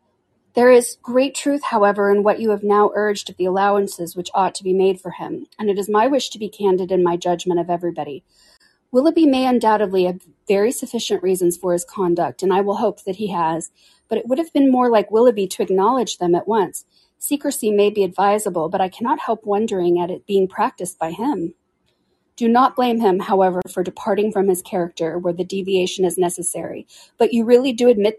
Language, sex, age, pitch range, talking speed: English, female, 40-59, 185-235 Hz, 210 wpm